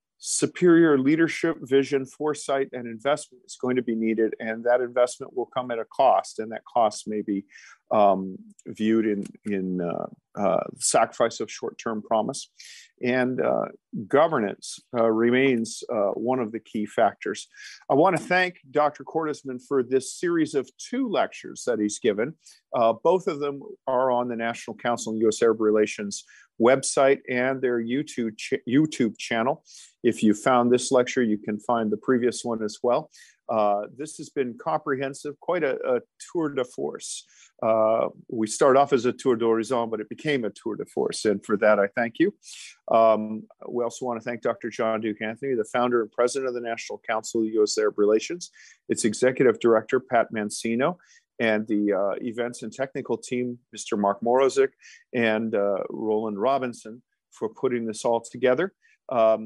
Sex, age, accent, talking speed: male, 50-69, American, 170 wpm